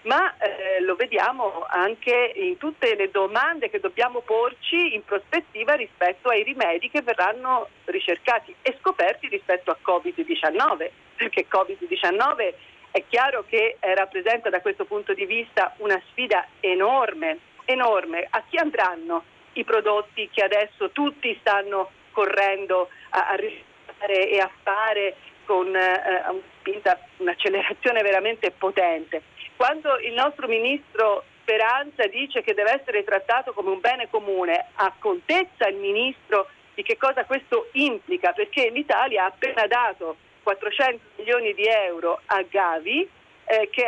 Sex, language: female, Italian